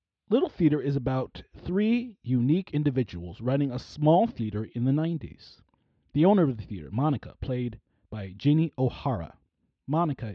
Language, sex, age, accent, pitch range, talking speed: English, male, 30-49, American, 115-160 Hz, 145 wpm